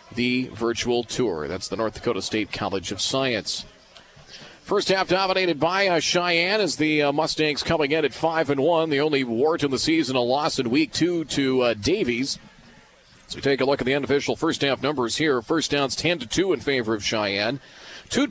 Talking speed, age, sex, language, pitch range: 190 wpm, 40-59, male, English, 125-160 Hz